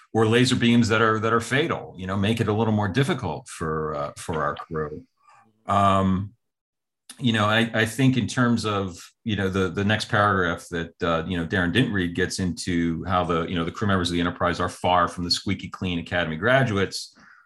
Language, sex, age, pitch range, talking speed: English, male, 40-59, 90-110 Hz, 215 wpm